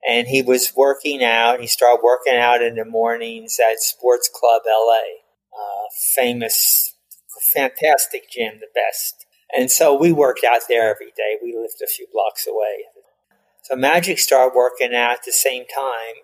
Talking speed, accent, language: 165 wpm, American, English